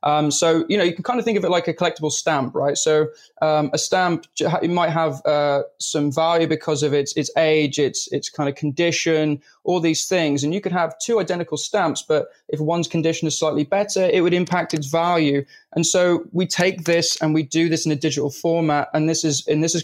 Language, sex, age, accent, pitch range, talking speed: English, male, 20-39, British, 150-175 Hz, 235 wpm